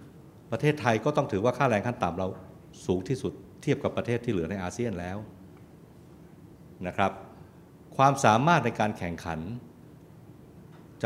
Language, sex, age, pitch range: Thai, male, 60-79, 95-140 Hz